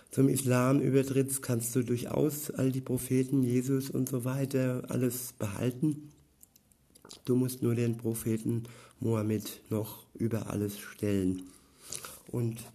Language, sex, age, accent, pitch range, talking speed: German, male, 50-69, German, 110-130 Hz, 120 wpm